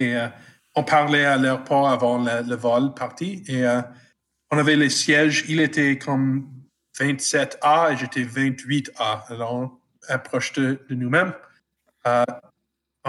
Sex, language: male, French